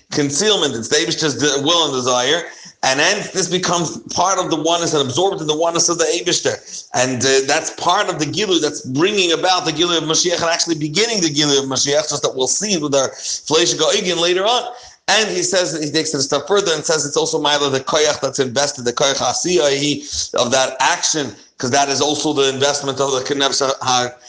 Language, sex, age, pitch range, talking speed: English, male, 40-59, 135-170 Hz, 215 wpm